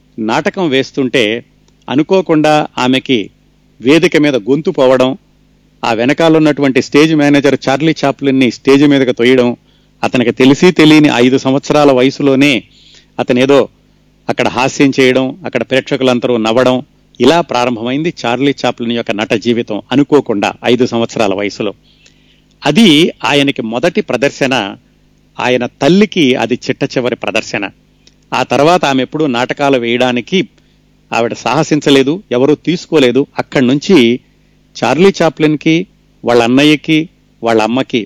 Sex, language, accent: male, Telugu, native